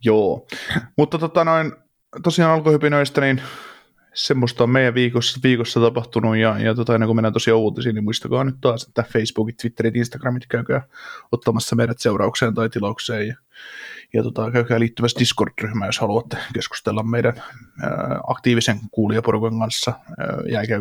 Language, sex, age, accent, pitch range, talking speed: Finnish, male, 20-39, native, 115-130 Hz, 155 wpm